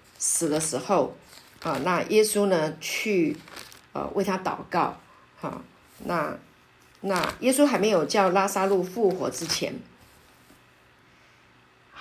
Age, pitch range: 50-69, 160-210 Hz